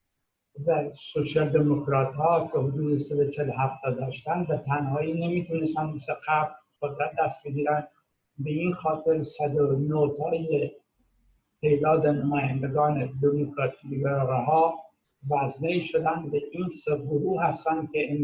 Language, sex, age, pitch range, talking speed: Persian, male, 60-79, 145-165 Hz, 120 wpm